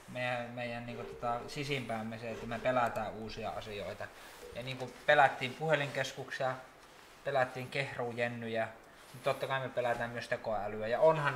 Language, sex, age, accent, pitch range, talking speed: Finnish, male, 20-39, native, 115-140 Hz, 130 wpm